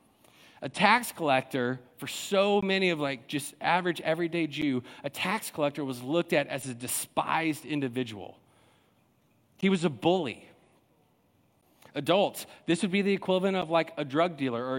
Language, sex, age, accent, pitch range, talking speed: English, male, 40-59, American, 130-175 Hz, 155 wpm